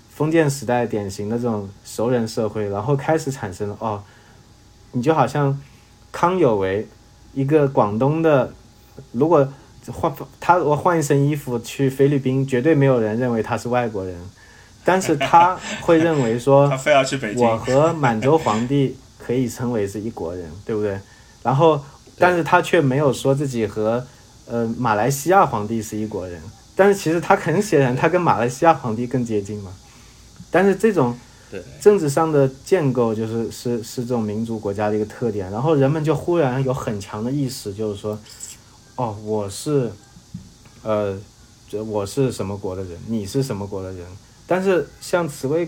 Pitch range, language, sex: 110-140 Hz, Chinese, male